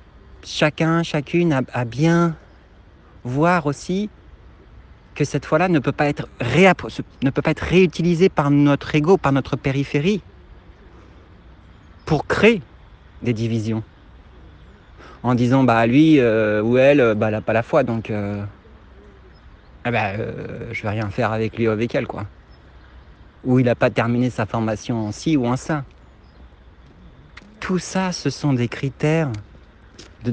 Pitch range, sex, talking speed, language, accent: 100-150 Hz, male, 145 wpm, French, French